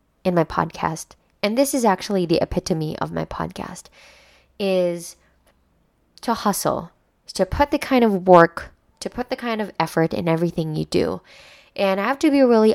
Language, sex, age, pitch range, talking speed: Filipino, female, 20-39, 170-235 Hz, 175 wpm